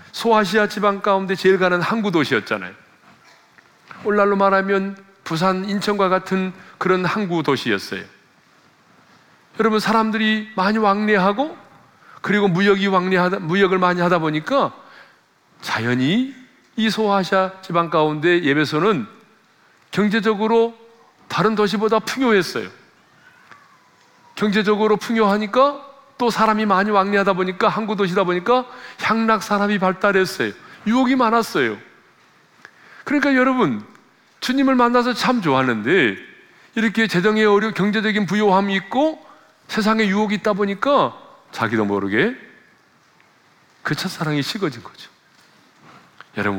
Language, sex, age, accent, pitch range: Korean, male, 40-59, native, 185-220 Hz